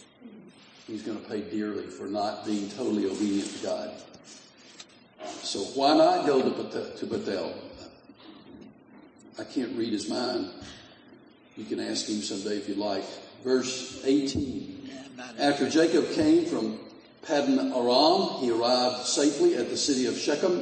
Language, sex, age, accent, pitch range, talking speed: English, male, 50-69, American, 110-145 Hz, 135 wpm